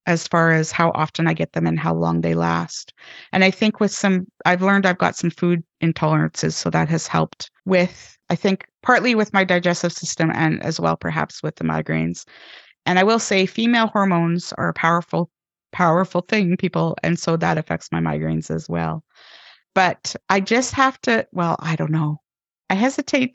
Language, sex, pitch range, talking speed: English, female, 165-230 Hz, 195 wpm